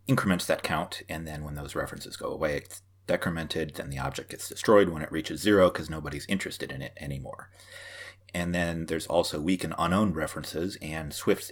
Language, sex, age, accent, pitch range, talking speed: English, male, 30-49, American, 75-95 Hz, 195 wpm